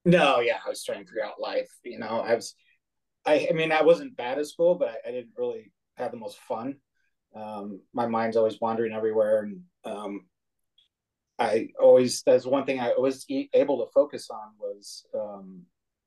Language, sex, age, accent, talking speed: English, male, 30-49, American, 190 wpm